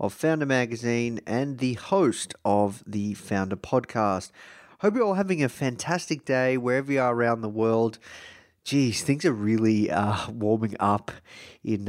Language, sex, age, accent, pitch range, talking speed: English, male, 30-49, Australian, 100-125 Hz, 155 wpm